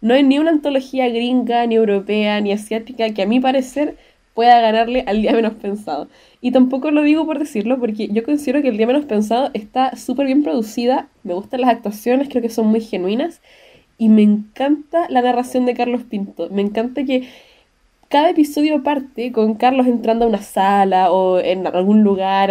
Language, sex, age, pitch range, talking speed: Spanish, female, 10-29, 210-260 Hz, 190 wpm